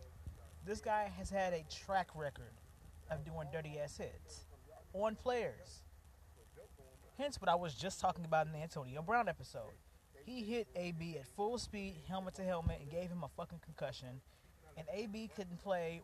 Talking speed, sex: 170 wpm, male